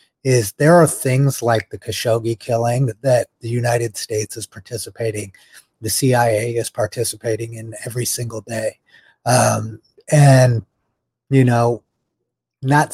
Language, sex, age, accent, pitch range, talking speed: English, male, 30-49, American, 110-125 Hz, 130 wpm